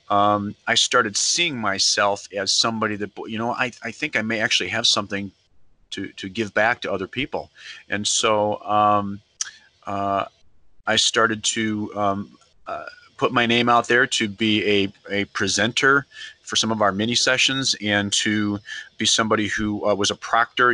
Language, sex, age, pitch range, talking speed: English, male, 30-49, 100-115 Hz, 170 wpm